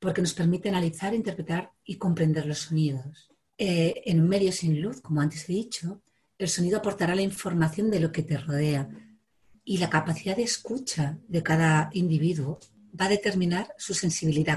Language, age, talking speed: Spanish, 40-59, 175 wpm